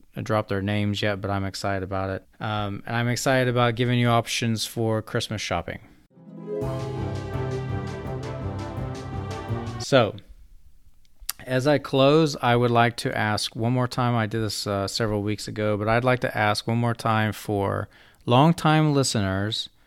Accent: American